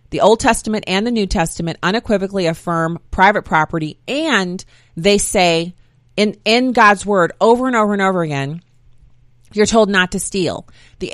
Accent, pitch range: American, 155-205 Hz